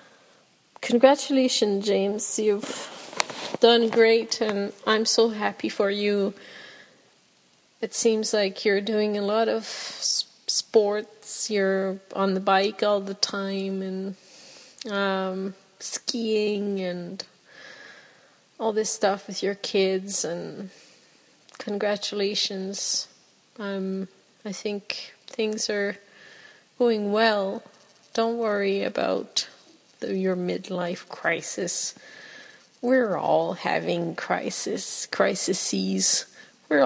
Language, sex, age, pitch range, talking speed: English, female, 30-49, 195-230 Hz, 95 wpm